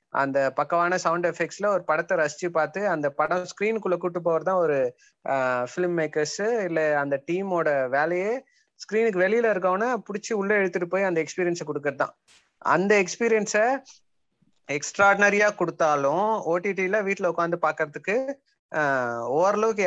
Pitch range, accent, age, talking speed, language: 150-195 Hz, native, 30-49, 120 wpm, Tamil